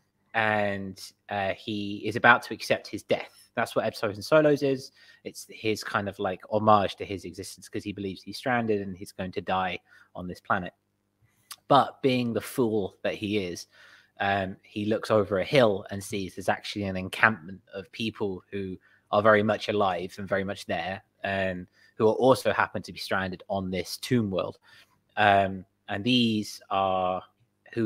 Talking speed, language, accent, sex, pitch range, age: 180 wpm, English, British, male, 100-110 Hz, 20-39